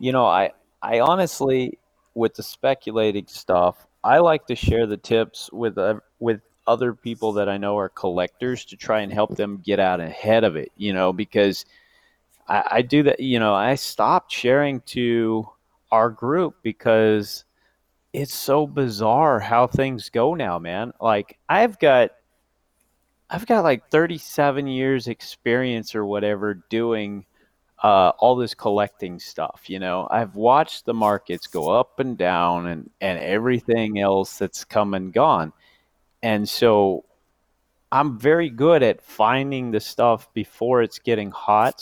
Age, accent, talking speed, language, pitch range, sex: 30-49, American, 155 wpm, English, 100-125 Hz, male